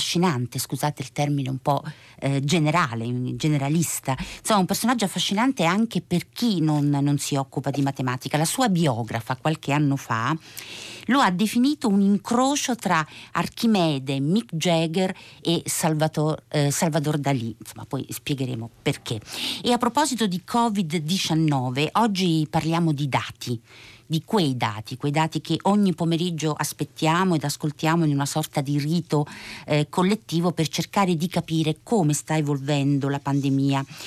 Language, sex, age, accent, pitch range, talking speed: Italian, female, 50-69, native, 140-180 Hz, 140 wpm